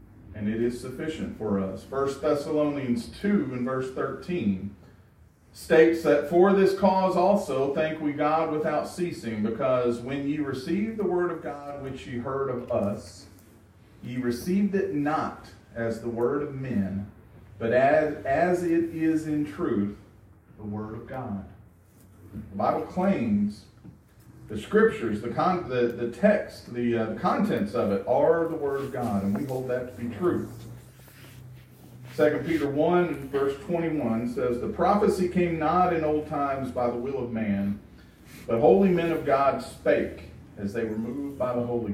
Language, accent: English, American